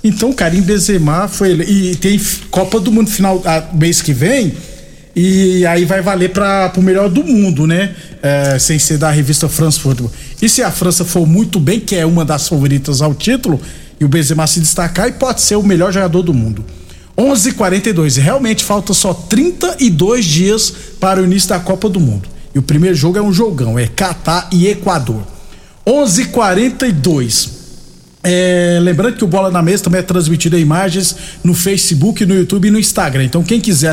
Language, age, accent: Portuguese, 50-69, Brazilian